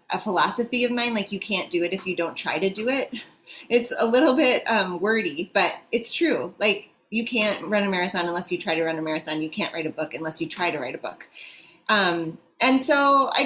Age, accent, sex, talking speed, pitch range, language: 30-49, American, female, 240 wpm, 185-245 Hz, English